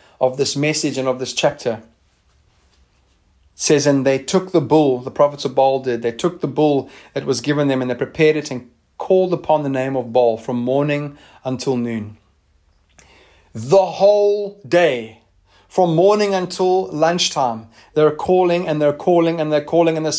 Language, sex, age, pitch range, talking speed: English, male, 30-49, 115-155 Hz, 175 wpm